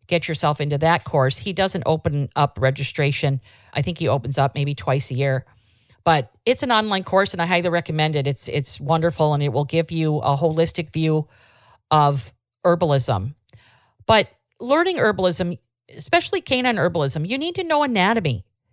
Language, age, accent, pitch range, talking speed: English, 50-69, American, 135-200 Hz, 170 wpm